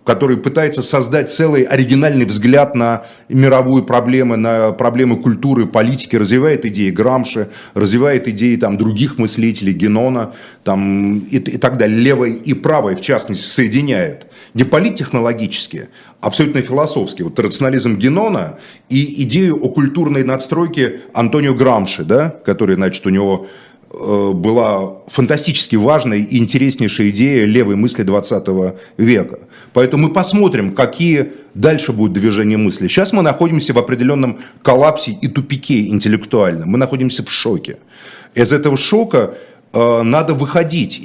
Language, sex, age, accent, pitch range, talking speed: Russian, male, 30-49, native, 115-145 Hz, 130 wpm